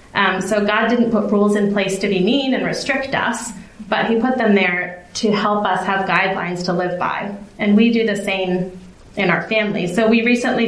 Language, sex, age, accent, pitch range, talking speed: English, female, 30-49, American, 200-235 Hz, 215 wpm